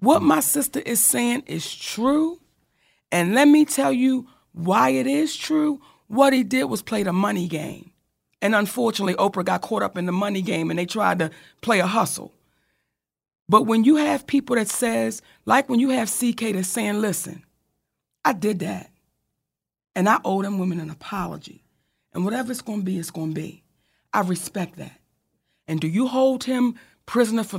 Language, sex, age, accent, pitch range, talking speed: English, female, 40-59, American, 180-250 Hz, 185 wpm